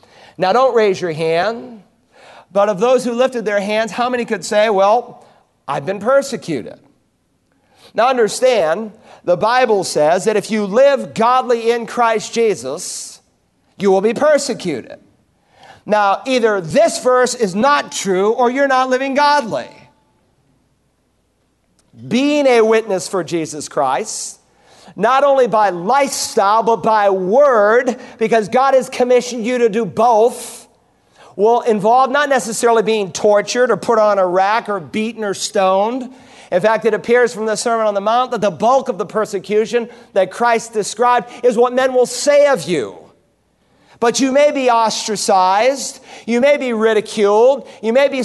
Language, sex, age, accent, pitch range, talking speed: English, male, 50-69, American, 210-255 Hz, 155 wpm